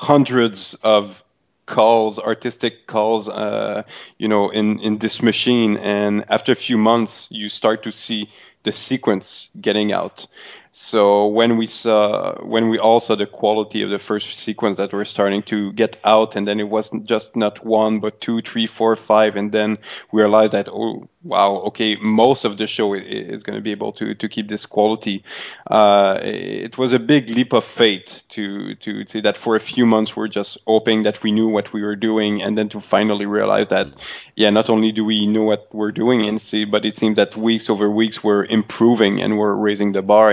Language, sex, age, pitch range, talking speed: English, male, 20-39, 105-110 Hz, 200 wpm